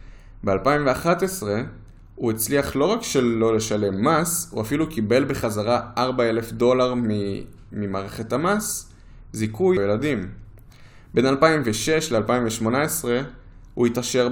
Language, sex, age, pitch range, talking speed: Hebrew, male, 20-39, 95-120 Hz, 95 wpm